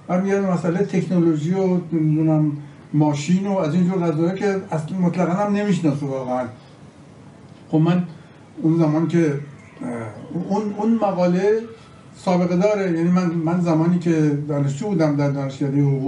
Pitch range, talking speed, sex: 145-180 Hz, 135 wpm, male